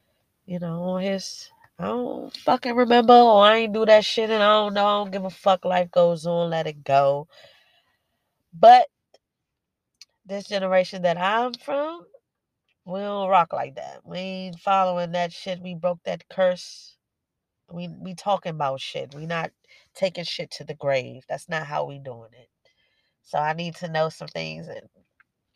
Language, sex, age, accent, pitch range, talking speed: English, female, 20-39, American, 160-200 Hz, 175 wpm